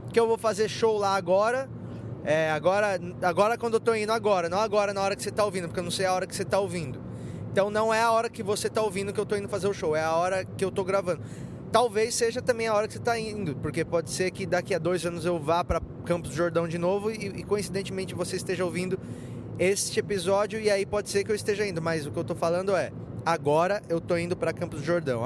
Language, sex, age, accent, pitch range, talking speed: Portuguese, male, 20-39, Brazilian, 170-220 Hz, 260 wpm